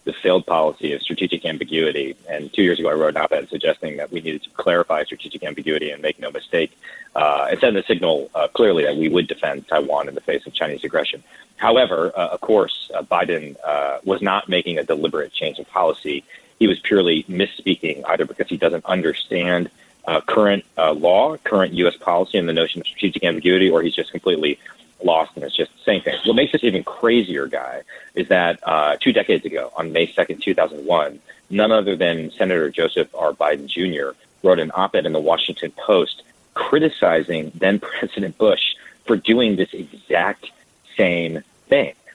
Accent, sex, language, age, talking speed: American, male, English, 30-49, 190 wpm